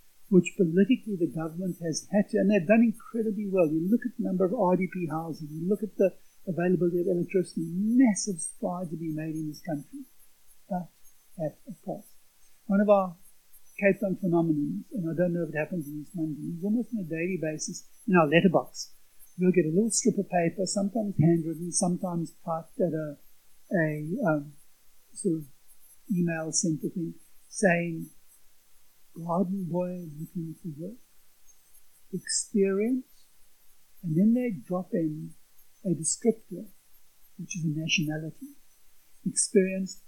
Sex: male